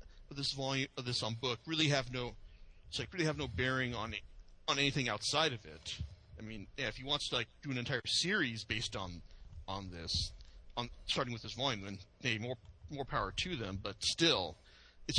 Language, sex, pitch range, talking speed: English, male, 100-140 Hz, 205 wpm